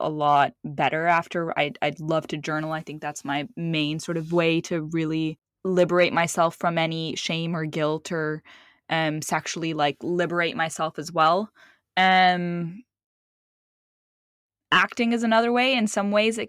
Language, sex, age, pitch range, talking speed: English, female, 20-39, 155-180 Hz, 155 wpm